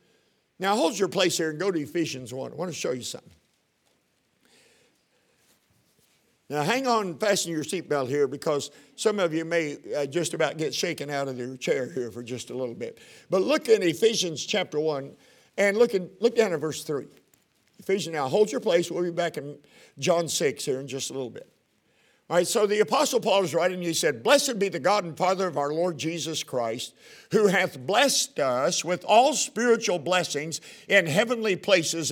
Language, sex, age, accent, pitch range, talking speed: English, male, 50-69, American, 150-210 Hz, 195 wpm